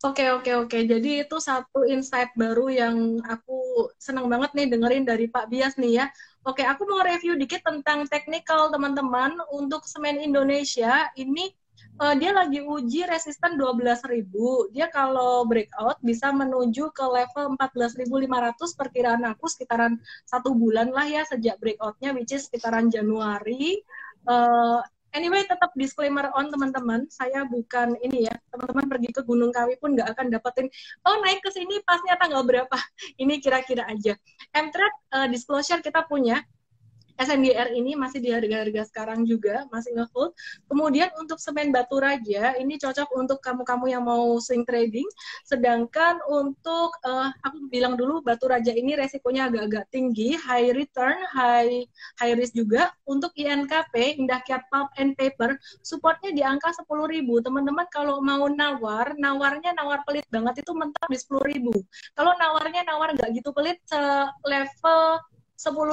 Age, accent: 20-39, native